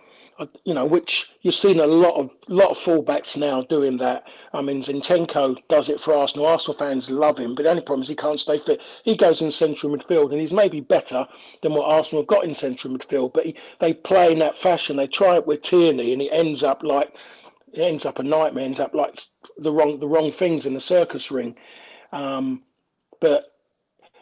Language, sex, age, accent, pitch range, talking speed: English, male, 40-59, British, 145-170 Hz, 215 wpm